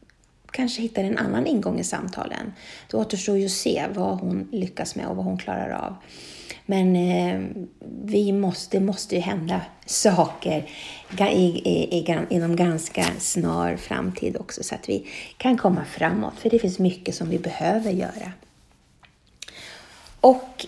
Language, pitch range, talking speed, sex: Swedish, 175-220 Hz, 145 wpm, female